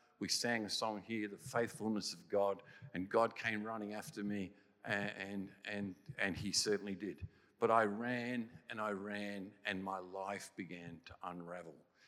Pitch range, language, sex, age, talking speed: 95-120 Hz, English, male, 50-69, 165 wpm